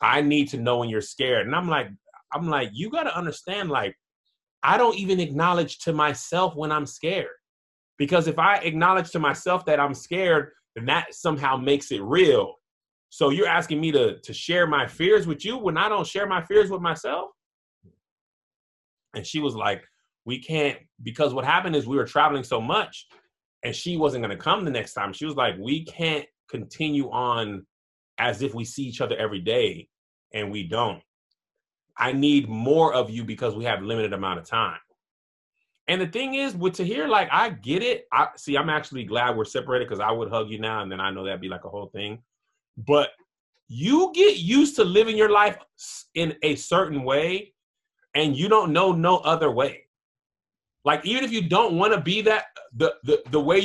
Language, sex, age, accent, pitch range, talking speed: English, male, 20-39, American, 135-200 Hz, 200 wpm